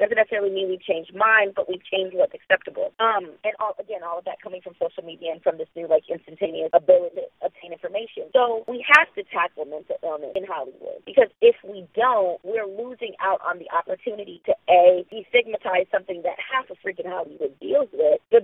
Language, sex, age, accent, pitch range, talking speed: English, female, 30-49, American, 185-285 Hz, 205 wpm